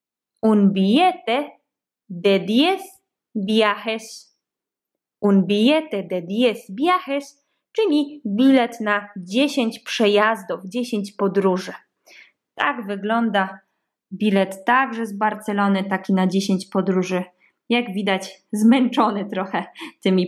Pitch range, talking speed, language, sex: 195-270 Hz, 95 wpm, Polish, female